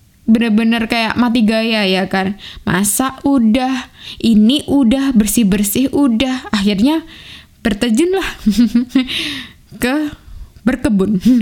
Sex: female